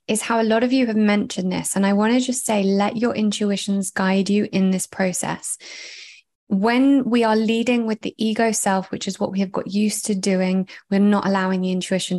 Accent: British